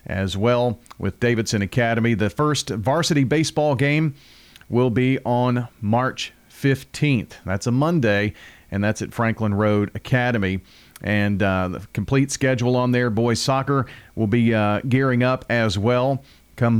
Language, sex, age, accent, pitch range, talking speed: English, male, 40-59, American, 110-135 Hz, 145 wpm